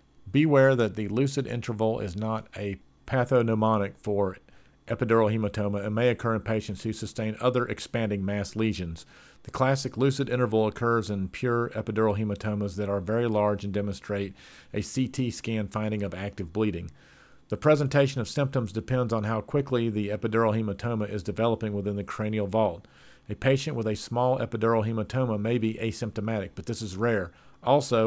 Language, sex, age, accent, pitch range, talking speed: English, male, 50-69, American, 105-120 Hz, 165 wpm